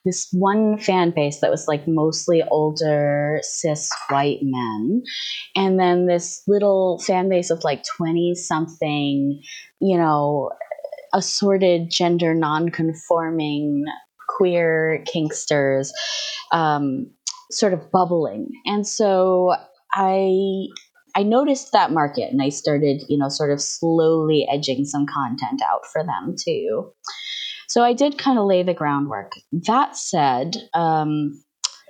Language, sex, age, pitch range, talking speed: English, female, 20-39, 150-200 Hz, 125 wpm